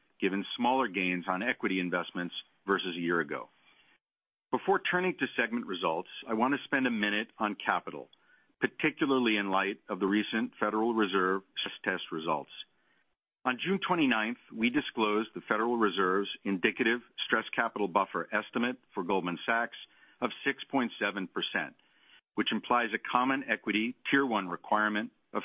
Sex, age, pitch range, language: male, 50-69, 95-120 Hz, English